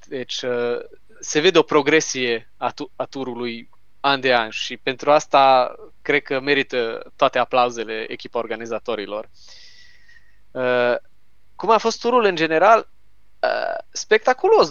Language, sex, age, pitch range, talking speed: Romanian, male, 20-39, 105-165 Hz, 110 wpm